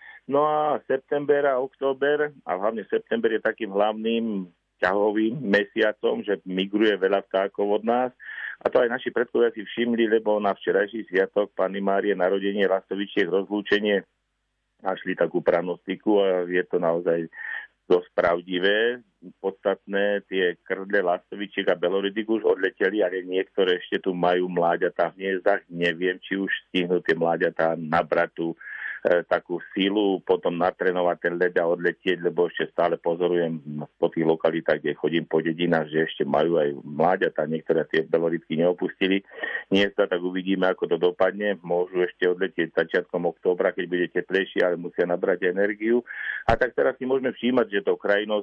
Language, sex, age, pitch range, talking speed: Slovak, male, 50-69, 90-105 Hz, 155 wpm